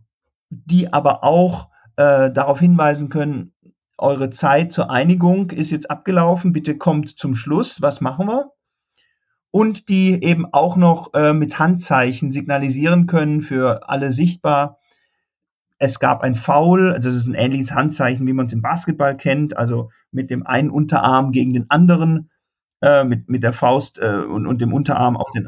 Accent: German